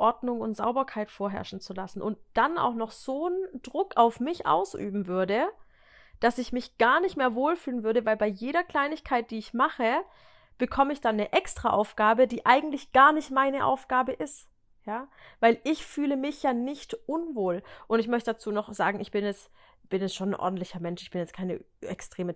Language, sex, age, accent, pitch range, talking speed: German, female, 30-49, German, 210-280 Hz, 195 wpm